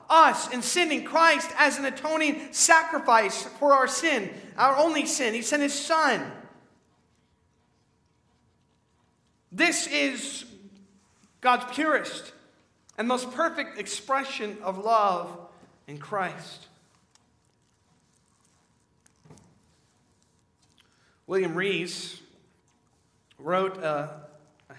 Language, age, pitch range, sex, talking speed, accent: English, 40-59, 150-205 Hz, male, 85 wpm, American